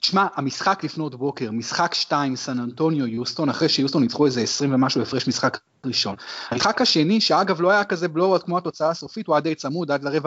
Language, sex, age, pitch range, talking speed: Hebrew, male, 30-49, 135-185 Hz, 200 wpm